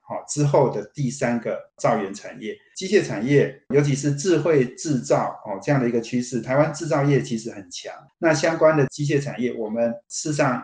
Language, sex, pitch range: Chinese, male, 120-145 Hz